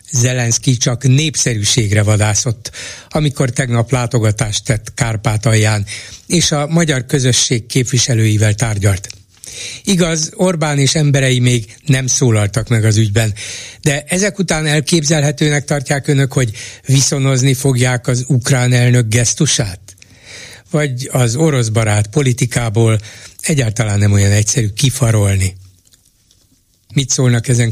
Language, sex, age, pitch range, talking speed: Hungarian, male, 60-79, 110-140 Hz, 110 wpm